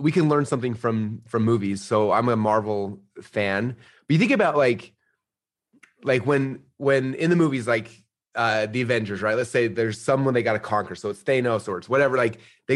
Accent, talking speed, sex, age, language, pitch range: American, 205 wpm, male, 30-49, English, 105-130 Hz